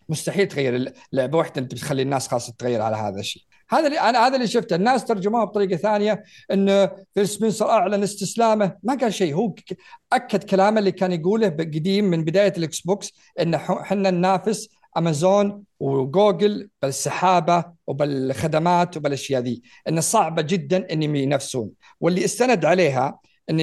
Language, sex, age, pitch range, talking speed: Arabic, male, 50-69, 140-195 Hz, 145 wpm